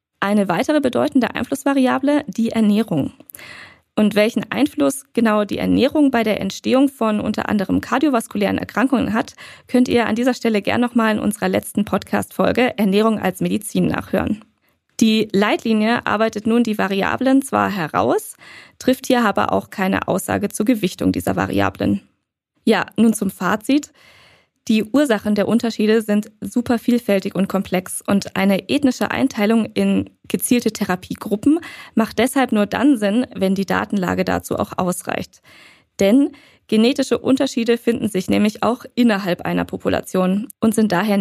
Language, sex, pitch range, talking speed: German, female, 195-250 Hz, 145 wpm